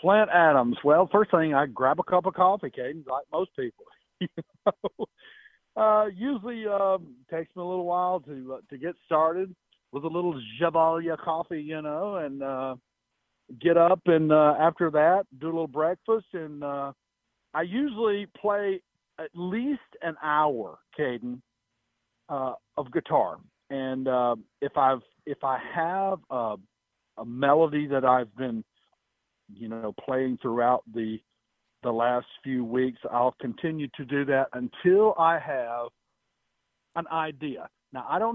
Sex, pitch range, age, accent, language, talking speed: male, 130-180 Hz, 50-69, American, English, 155 wpm